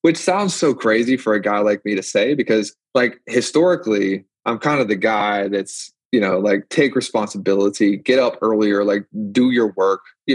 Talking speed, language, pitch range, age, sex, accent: 190 wpm, English, 105-130 Hz, 20-39, male, American